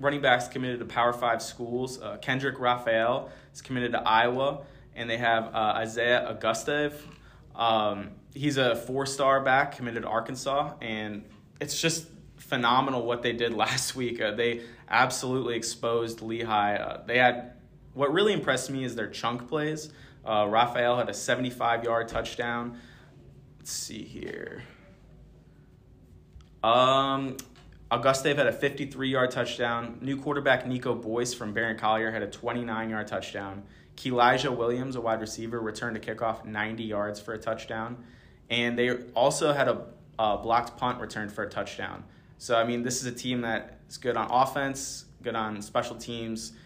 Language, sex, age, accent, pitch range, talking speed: English, male, 20-39, American, 115-130 Hz, 155 wpm